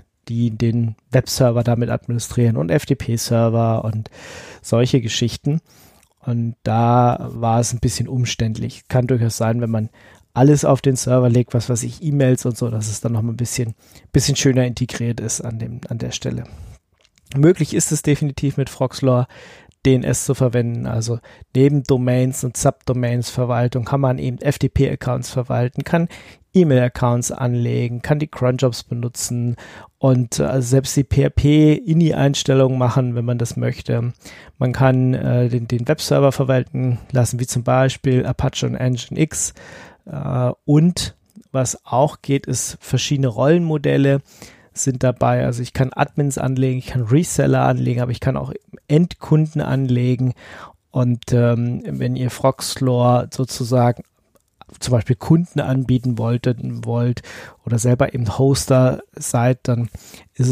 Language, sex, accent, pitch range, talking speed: German, male, German, 120-135 Hz, 140 wpm